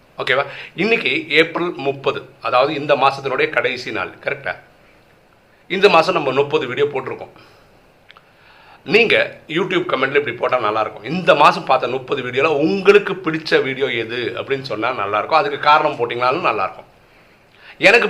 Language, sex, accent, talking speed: Tamil, male, native, 130 wpm